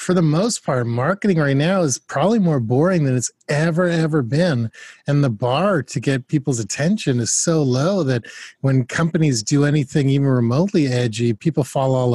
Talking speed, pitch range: 185 wpm, 125-160 Hz